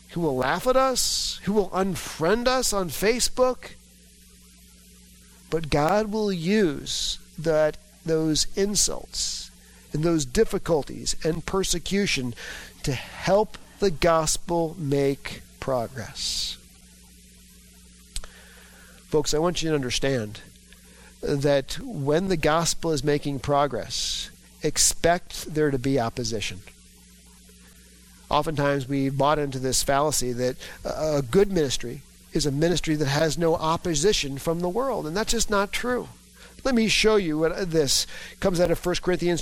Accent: American